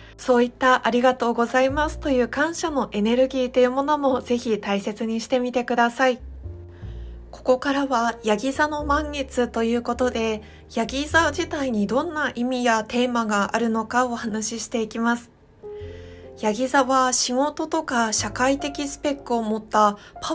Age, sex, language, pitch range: 20-39, female, Japanese, 220-270 Hz